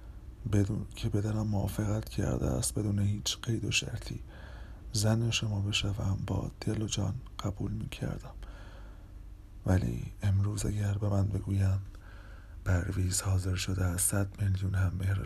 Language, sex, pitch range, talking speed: Persian, male, 95-100 Hz, 135 wpm